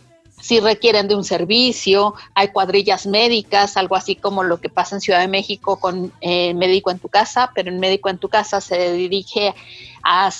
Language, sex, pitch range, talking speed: Spanish, female, 190-215 Hz, 190 wpm